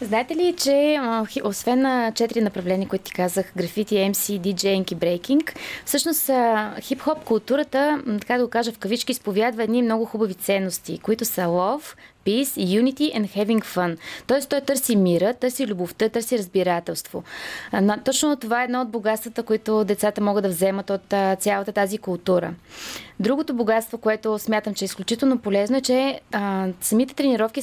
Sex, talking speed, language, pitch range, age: female, 160 wpm, Bulgarian, 195-245 Hz, 20-39